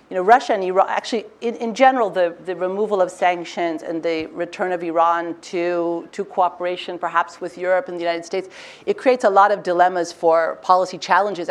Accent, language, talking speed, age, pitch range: American, English, 200 wpm, 40-59, 170-185 Hz